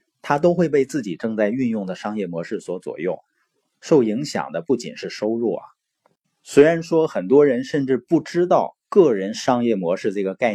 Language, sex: Chinese, male